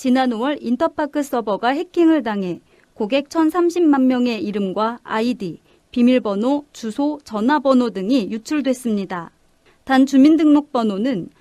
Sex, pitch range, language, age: female, 225-285 Hz, Korean, 30-49